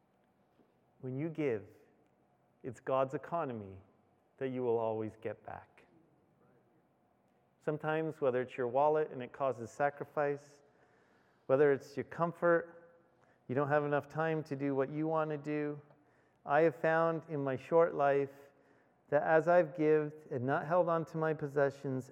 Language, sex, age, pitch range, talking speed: English, male, 40-59, 115-145 Hz, 150 wpm